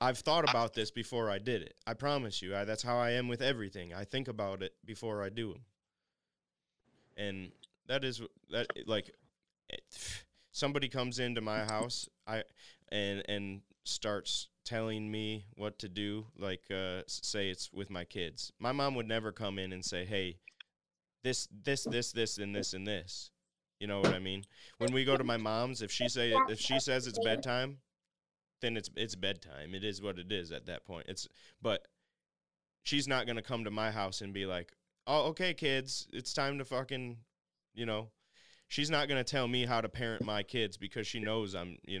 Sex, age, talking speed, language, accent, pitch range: male, 20-39, 195 wpm, English, American, 95-125 Hz